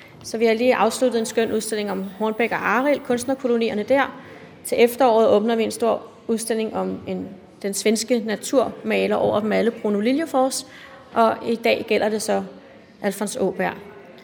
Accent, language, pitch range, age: native, Danish, 210-250 Hz, 30-49